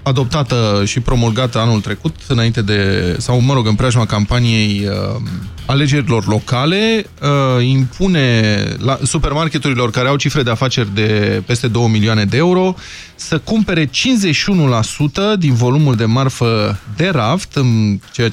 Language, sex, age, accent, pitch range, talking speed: Romanian, male, 20-39, native, 115-160 Hz, 130 wpm